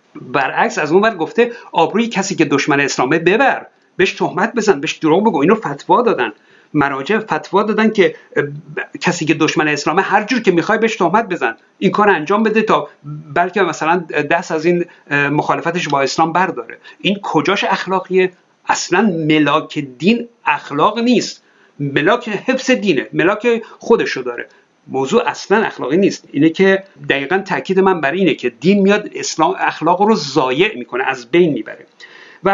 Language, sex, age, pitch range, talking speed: Persian, male, 60-79, 155-220 Hz, 160 wpm